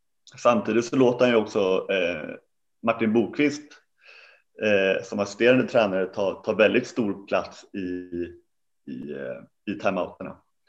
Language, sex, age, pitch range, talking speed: Danish, male, 30-49, 95-120 Hz, 130 wpm